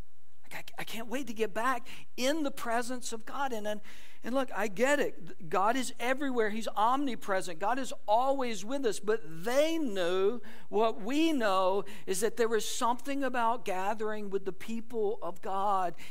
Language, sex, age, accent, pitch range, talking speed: English, male, 60-79, American, 180-235 Hz, 170 wpm